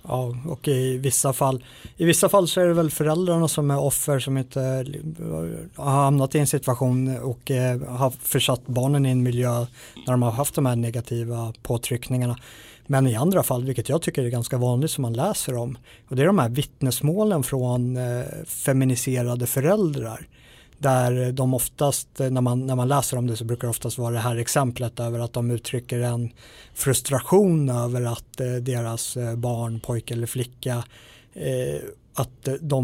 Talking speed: 170 wpm